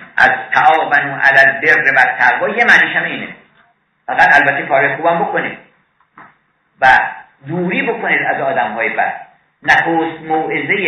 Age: 50-69